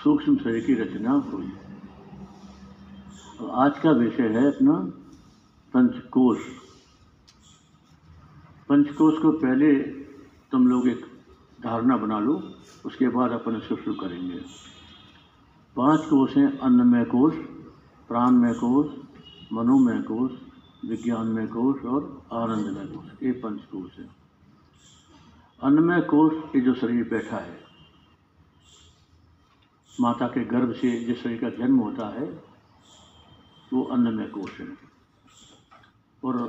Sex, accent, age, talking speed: male, native, 60-79, 110 wpm